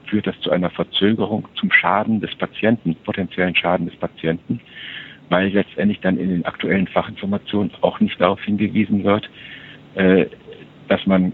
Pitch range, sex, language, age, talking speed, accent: 85-100 Hz, male, German, 60-79, 145 wpm, German